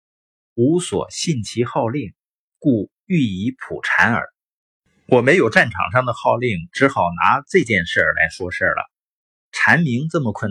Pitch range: 110-145 Hz